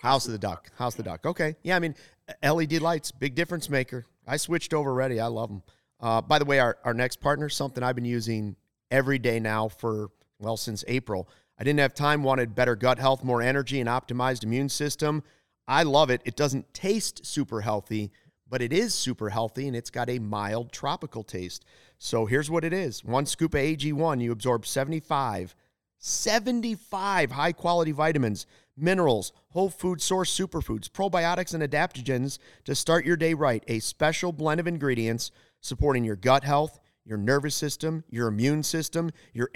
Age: 40-59